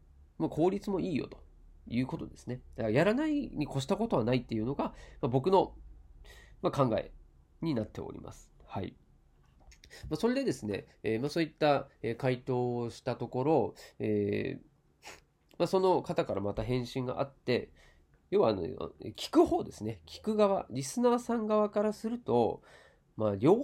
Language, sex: Japanese, male